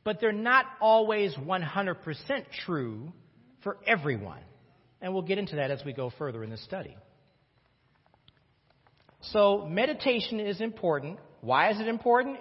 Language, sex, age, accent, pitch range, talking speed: English, male, 40-59, American, 150-220 Hz, 135 wpm